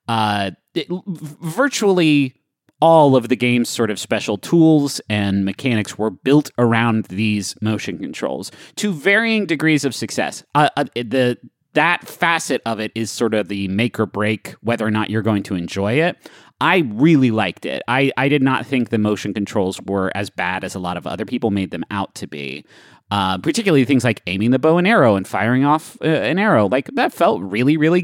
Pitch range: 105-150 Hz